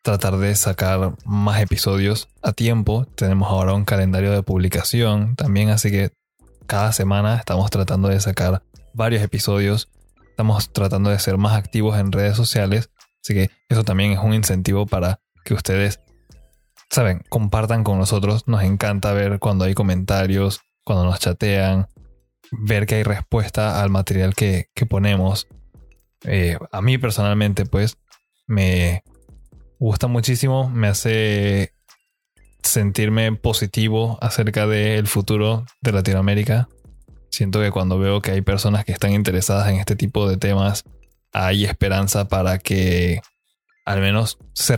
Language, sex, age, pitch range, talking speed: Spanish, male, 20-39, 95-110 Hz, 140 wpm